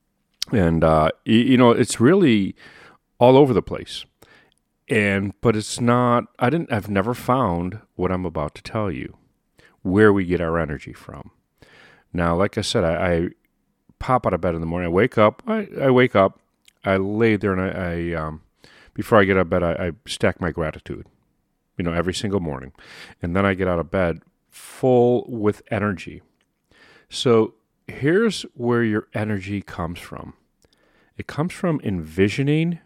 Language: English